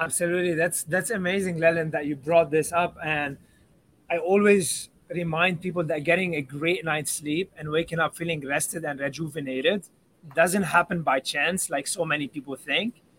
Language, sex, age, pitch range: English, male, 20-39, 155-185 Hz